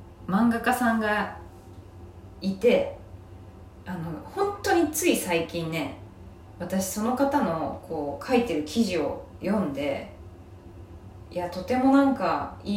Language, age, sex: Japanese, 20-39, female